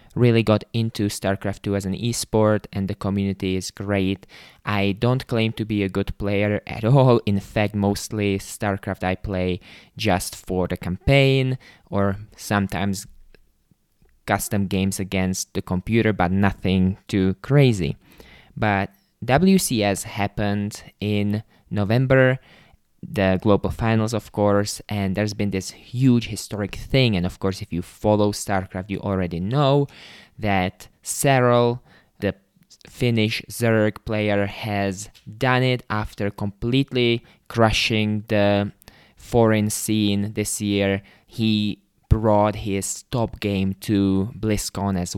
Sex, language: male, English